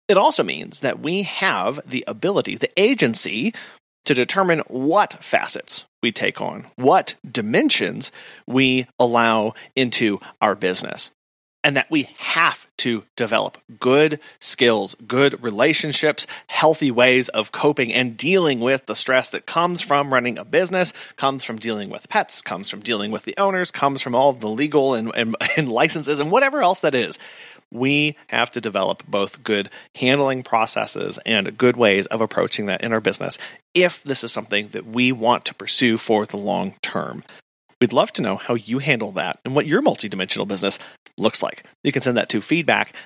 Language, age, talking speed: English, 30-49, 175 wpm